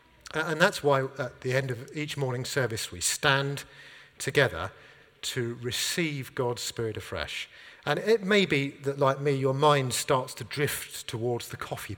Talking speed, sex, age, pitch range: 165 wpm, male, 50-69, 135-190 Hz